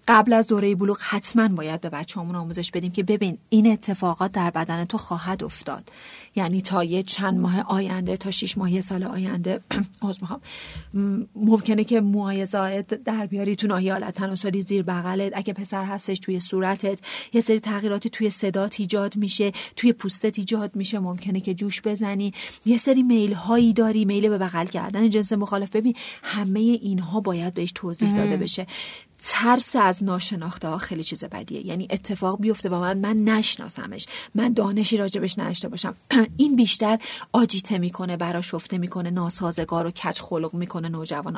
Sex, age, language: female, 40-59, Persian